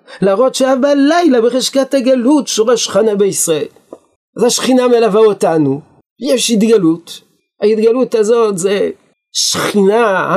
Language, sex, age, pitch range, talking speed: Hebrew, male, 50-69, 170-235 Hz, 100 wpm